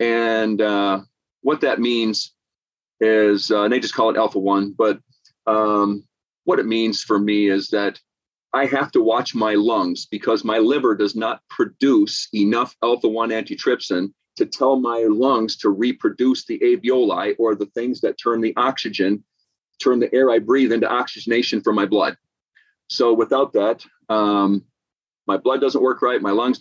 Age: 40-59